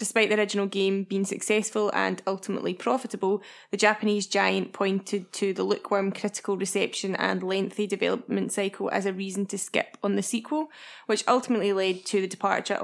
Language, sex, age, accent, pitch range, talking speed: English, female, 10-29, British, 185-215 Hz, 170 wpm